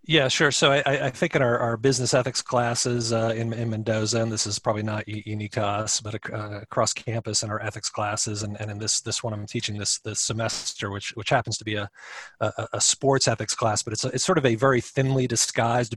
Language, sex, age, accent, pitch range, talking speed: English, male, 40-59, American, 105-115 Hz, 240 wpm